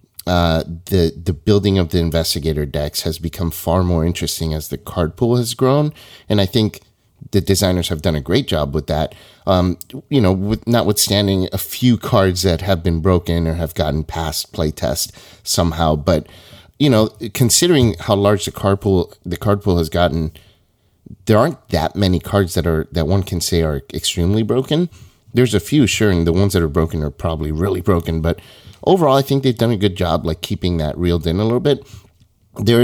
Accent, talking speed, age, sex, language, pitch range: American, 200 wpm, 30-49, male, English, 80-105 Hz